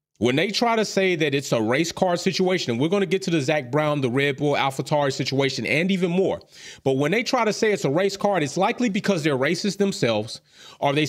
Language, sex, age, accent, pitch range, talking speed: English, male, 30-49, American, 140-195 Hz, 250 wpm